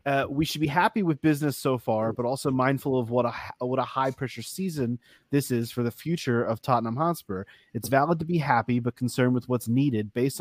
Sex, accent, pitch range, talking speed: male, American, 115-145 Hz, 225 wpm